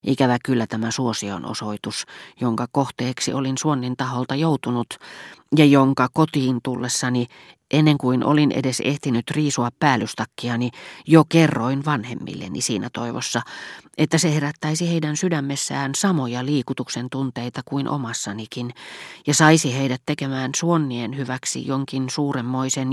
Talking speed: 115 wpm